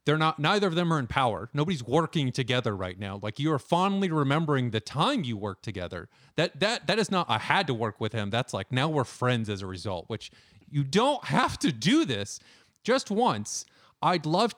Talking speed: 220 wpm